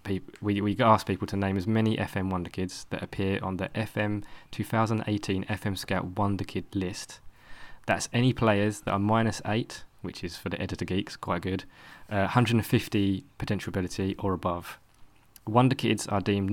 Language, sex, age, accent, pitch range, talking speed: English, male, 20-39, British, 95-110 Hz, 175 wpm